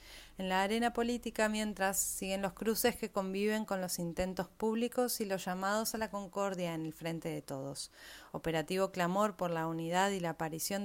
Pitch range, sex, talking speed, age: 165-200 Hz, female, 185 wpm, 30-49